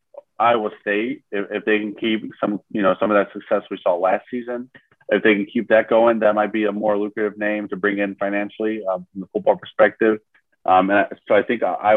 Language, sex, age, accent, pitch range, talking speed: English, male, 30-49, American, 95-110 Hz, 230 wpm